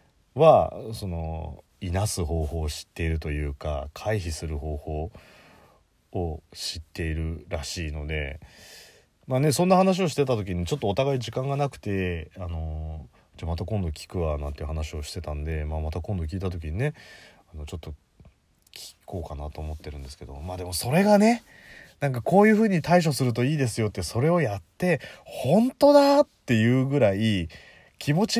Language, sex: Japanese, male